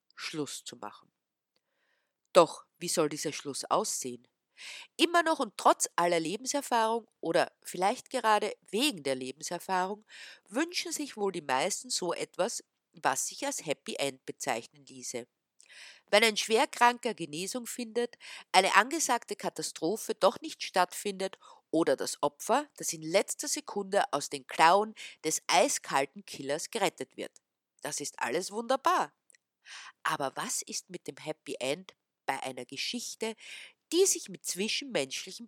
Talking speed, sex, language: 135 wpm, female, German